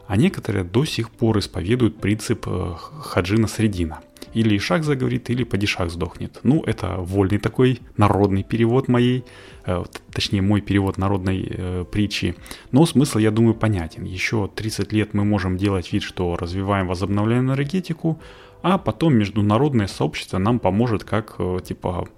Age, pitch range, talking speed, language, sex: 30-49, 95-110 Hz, 145 wpm, Russian, male